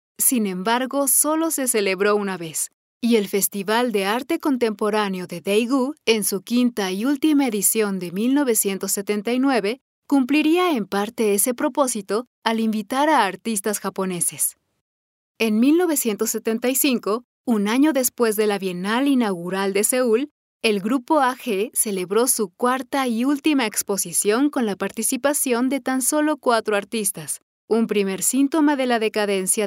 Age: 30-49